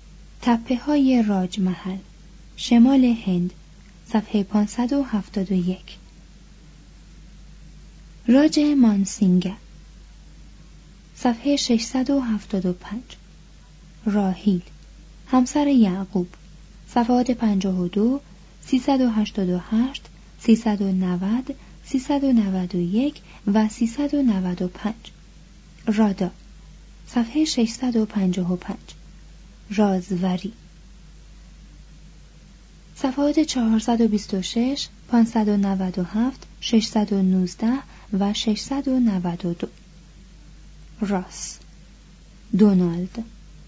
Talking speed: 70 wpm